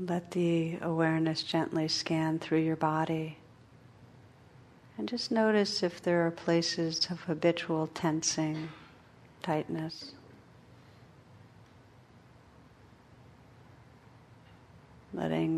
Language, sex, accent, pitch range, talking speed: English, female, American, 125-160 Hz, 75 wpm